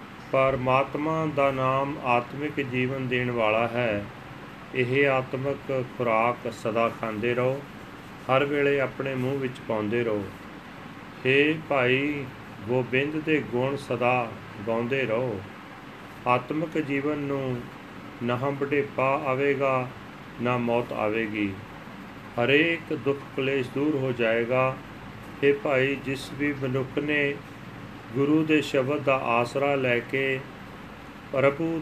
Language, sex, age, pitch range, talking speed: Punjabi, male, 40-59, 115-140 Hz, 110 wpm